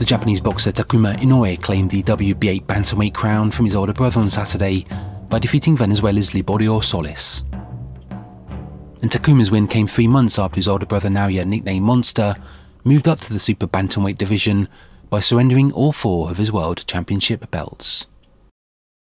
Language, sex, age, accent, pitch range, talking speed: English, male, 30-49, British, 100-115 Hz, 155 wpm